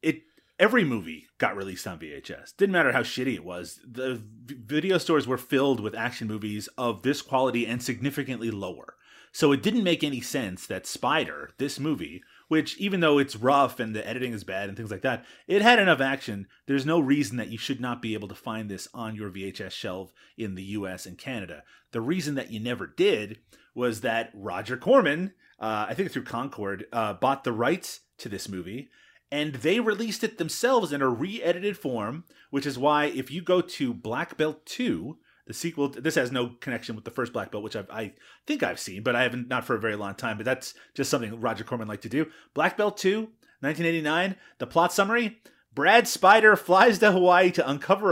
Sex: male